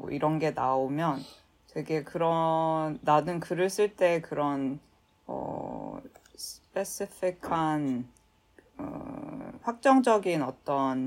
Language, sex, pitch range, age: Korean, female, 145-190 Hz, 20-39